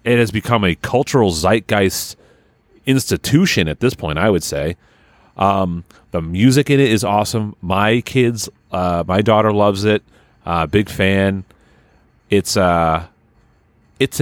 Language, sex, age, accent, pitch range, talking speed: English, male, 30-49, American, 90-125 Hz, 140 wpm